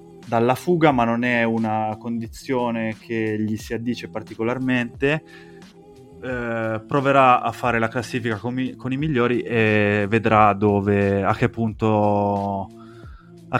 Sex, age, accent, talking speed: male, 20-39, native, 130 wpm